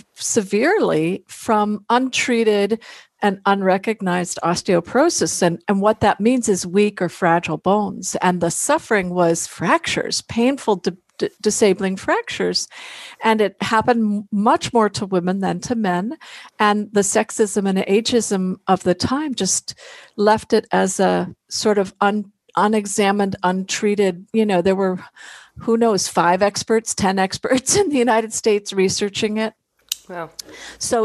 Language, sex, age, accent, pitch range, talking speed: English, female, 50-69, American, 185-220 Hz, 130 wpm